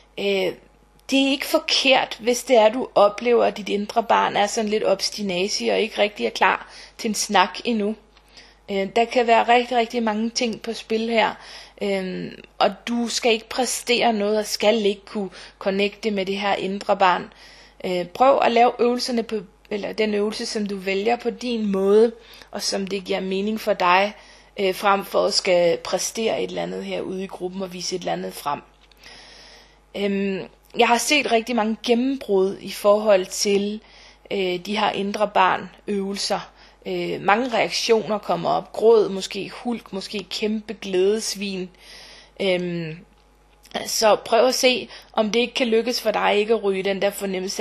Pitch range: 195-230 Hz